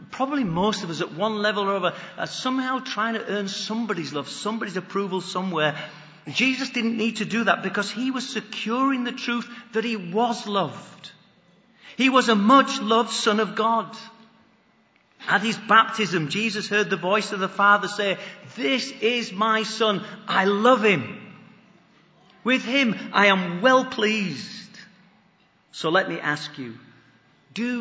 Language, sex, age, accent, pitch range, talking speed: English, male, 40-59, British, 185-235 Hz, 160 wpm